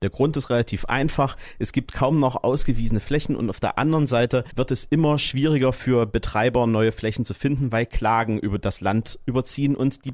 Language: German